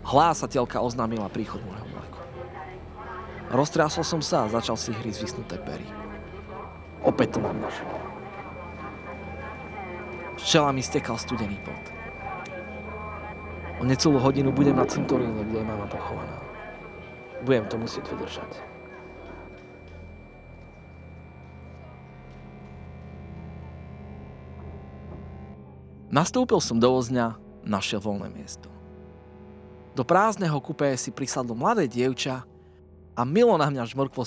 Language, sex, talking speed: Slovak, male, 95 wpm